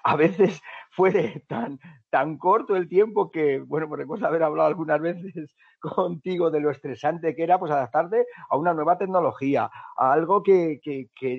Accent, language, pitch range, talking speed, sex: Spanish, Spanish, 145-205 Hz, 175 wpm, male